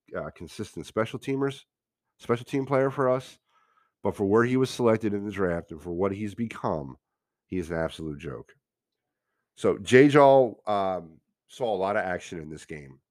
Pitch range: 80-120 Hz